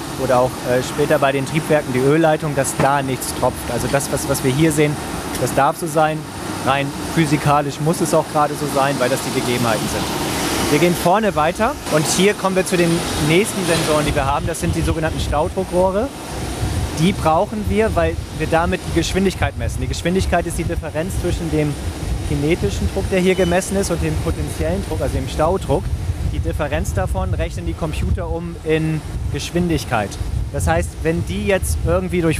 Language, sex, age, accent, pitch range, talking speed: German, male, 20-39, German, 95-155 Hz, 185 wpm